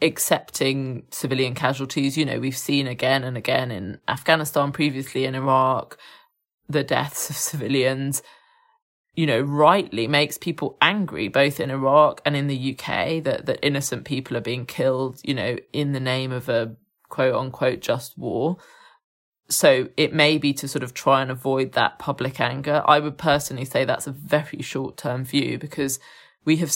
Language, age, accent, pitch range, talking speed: English, 20-39, British, 135-170 Hz, 170 wpm